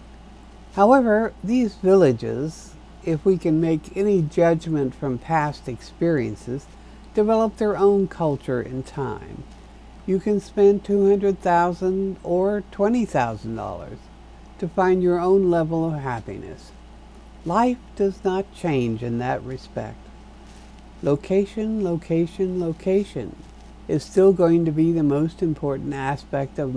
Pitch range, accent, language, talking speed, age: 140-195 Hz, American, English, 115 wpm, 60-79